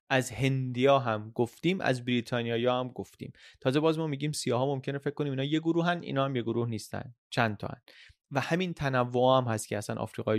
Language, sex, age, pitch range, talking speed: Persian, male, 30-49, 110-135 Hz, 210 wpm